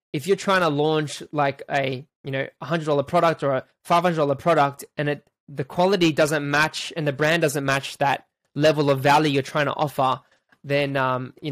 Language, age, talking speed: English, 20-39, 195 wpm